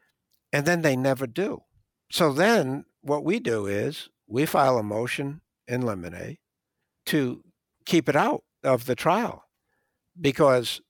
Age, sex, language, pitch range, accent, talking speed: 60-79, male, English, 105-140 Hz, American, 140 wpm